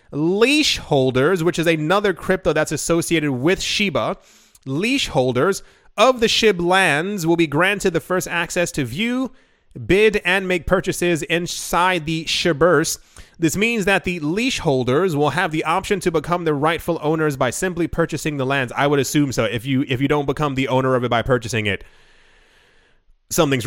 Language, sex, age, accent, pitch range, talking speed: English, male, 30-49, American, 150-195 Hz, 170 wpm